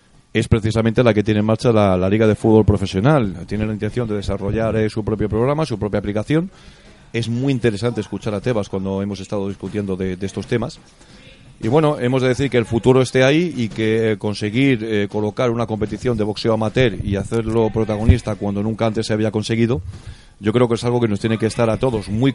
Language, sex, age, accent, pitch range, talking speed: Spanish, male, 30-49, Spanish, 100-115 Hz, 215 wpm